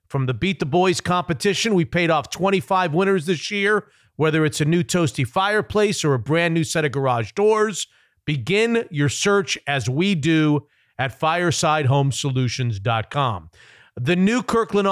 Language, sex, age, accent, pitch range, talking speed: English, male, 40-59, American, 150-195 Hz, 155 wpm